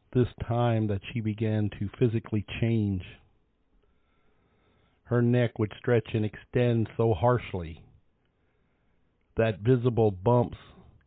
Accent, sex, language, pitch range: American, male, English, 100-120 Hz